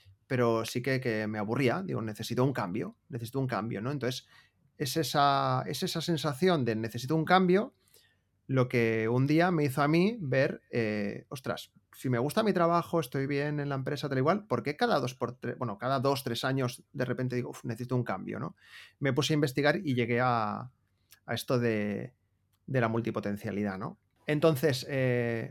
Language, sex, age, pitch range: Spanish, male, 30-49, 115-145 Hz